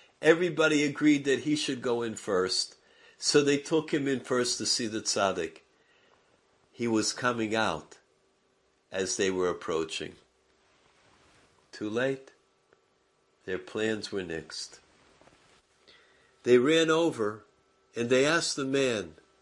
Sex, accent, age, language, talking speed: male, American, 50-69, English, 125 wpm